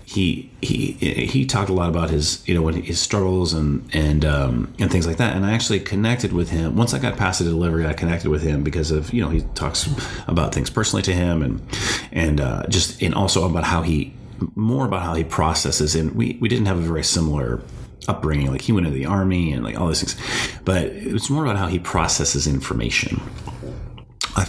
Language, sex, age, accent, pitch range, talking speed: English, male, 30-49, American, 80-100 Hz, 220 wpm